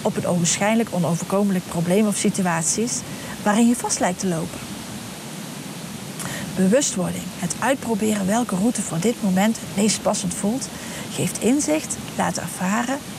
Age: 40-59